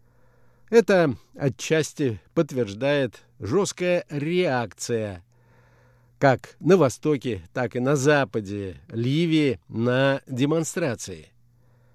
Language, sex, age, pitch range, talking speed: Russian, male, 50-69, 120-150 Hz, 75 wpm